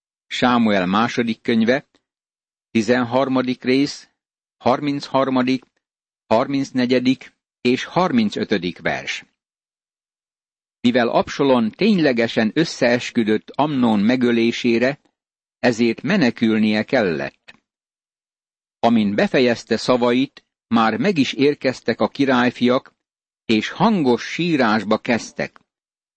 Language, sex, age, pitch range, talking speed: Hungarian, male, 60-79, 115-140 Hz, 75 wpm